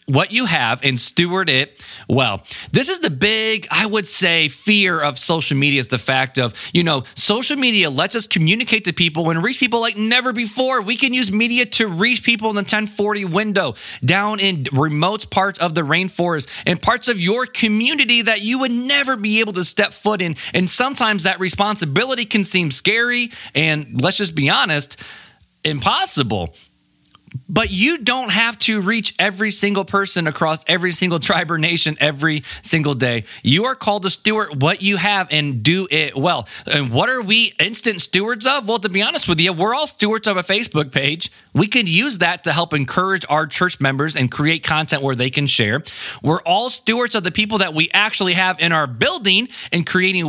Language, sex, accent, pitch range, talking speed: English, male, American, 155-215 Hz, 195 wpm